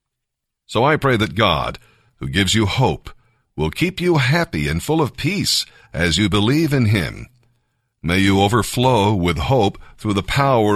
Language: English